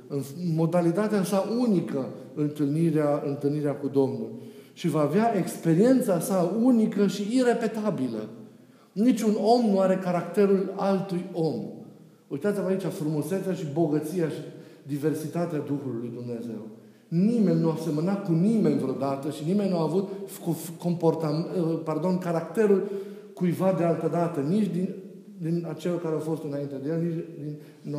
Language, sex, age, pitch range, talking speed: Romanian, male, 50-69, 155-200 Hz, 135 wpm